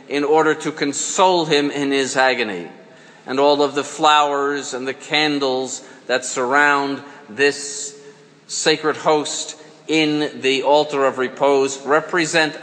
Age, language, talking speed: 50-69, English, 130 wpm